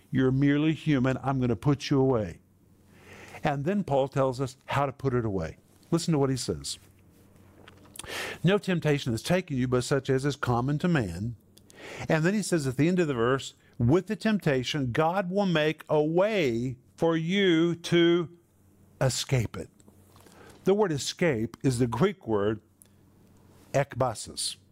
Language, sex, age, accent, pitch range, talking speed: English, male, 50-69, American, 100-150 Hz, 165 wpm